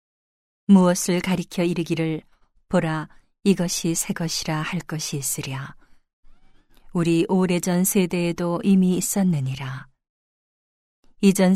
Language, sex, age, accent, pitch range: Korean, female, 40-59, native, 155-185 Hz